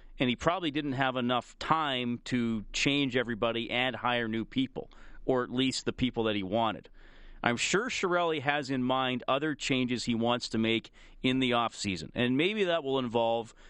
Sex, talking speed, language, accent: male, 185 wpm, English, American